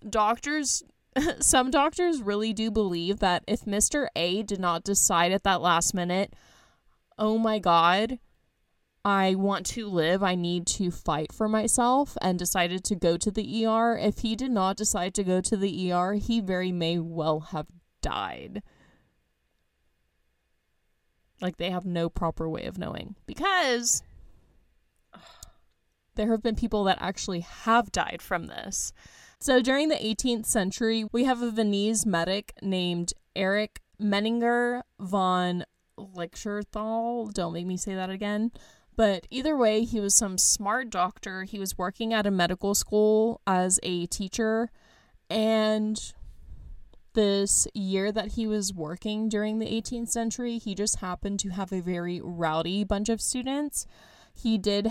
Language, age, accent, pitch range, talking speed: English, 20-39, American, 180-225 Hz, 150 wpm